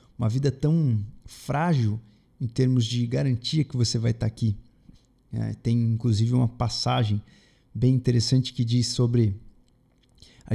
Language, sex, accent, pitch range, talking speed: Portuguese, male, Brazilian, 115-140 Hz, 130 wpm